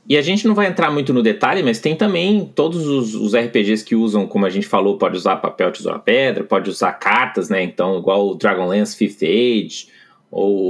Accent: Brazilian